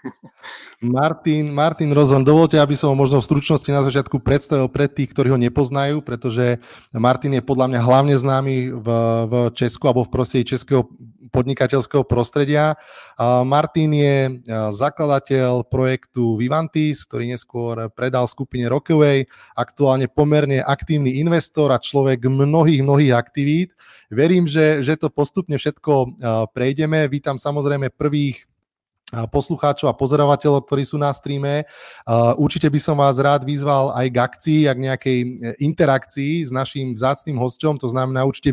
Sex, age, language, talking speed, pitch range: male, 30-49, Slovak, 145 wpm, 130-150 Hz